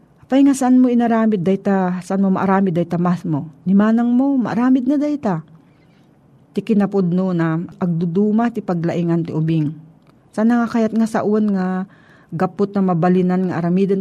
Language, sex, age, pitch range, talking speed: Filipino, female, 40-59, 160-215 Hz, 160 wpm